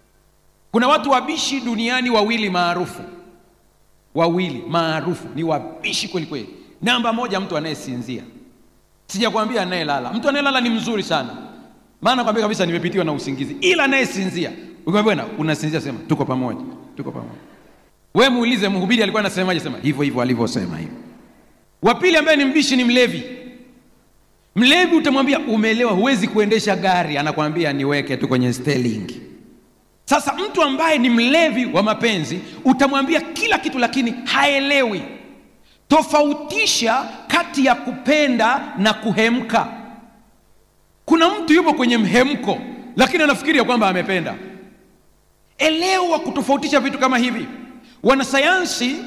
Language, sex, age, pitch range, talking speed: Swahili, male, 40-59, 190-275 Hz, 125 wpm